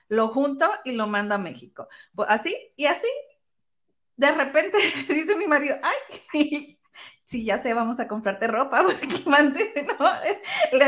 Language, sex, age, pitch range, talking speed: Spanish, female, 30-49, 225-300 Hz, 150 wpm